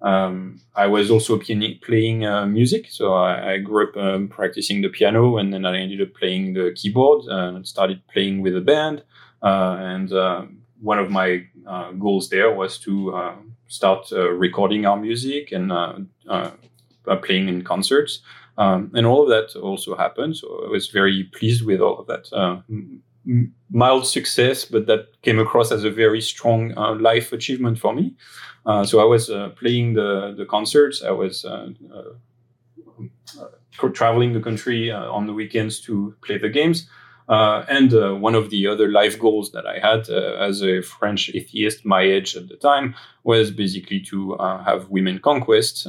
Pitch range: 95-120 Hz